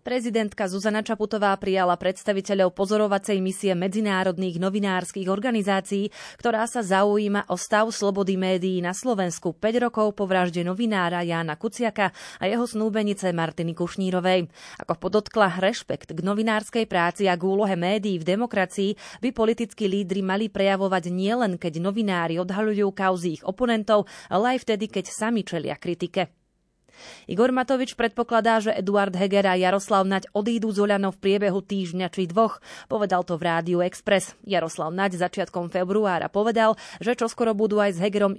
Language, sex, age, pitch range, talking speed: Slovak, female, 30-49, 180-215 Hz, 145 wpm